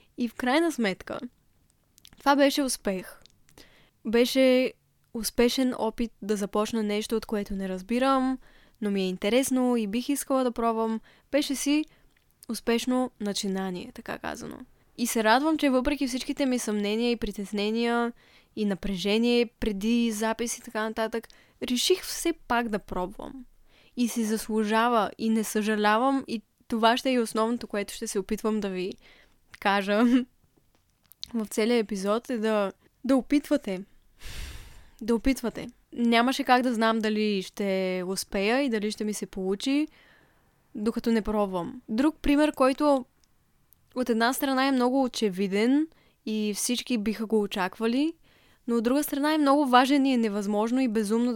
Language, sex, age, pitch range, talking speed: Bulgarian, female, 10-29, 210-255 Hz, 145 wpm